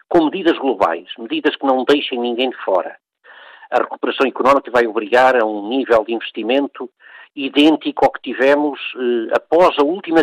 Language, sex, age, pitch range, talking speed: Portuguese, male, 50-69, 125-165 Hz, 165 wpm